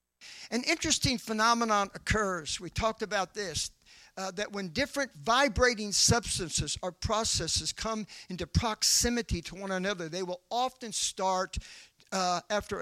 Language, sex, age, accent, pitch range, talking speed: English, male, 50-69, American, 190-270 Hz, 130 wpm